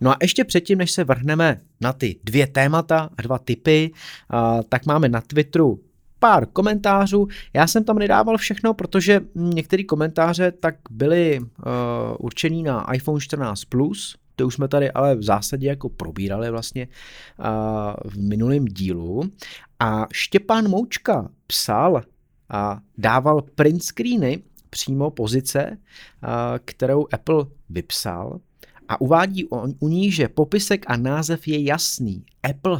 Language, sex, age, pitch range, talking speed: Czech, male, 30-49, 120-155 Hz, 130 wpm